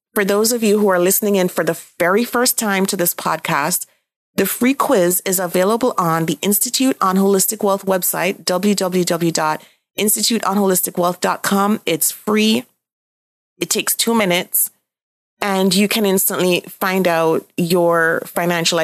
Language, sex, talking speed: English, female, 135 wpm